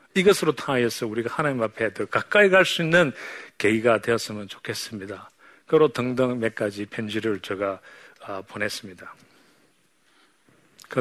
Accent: native